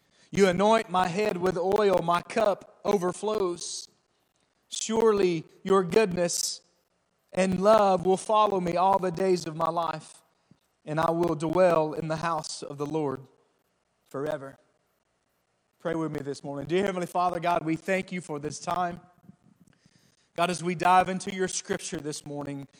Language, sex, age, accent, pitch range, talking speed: English, male, 40-59, American, 145-180 Hz, 155 wpm